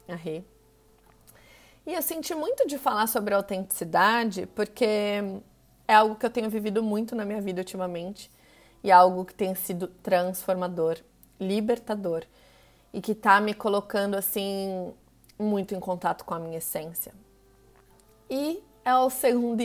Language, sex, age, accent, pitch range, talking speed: Portuguese, female, 30-49, Brazilian, 190-250 Hz, 145 wpm